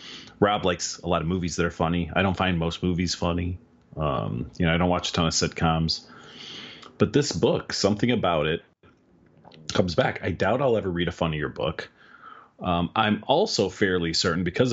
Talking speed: 190 wpm